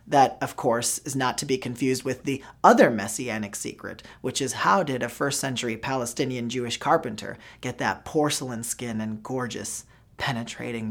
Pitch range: 140-195 Hz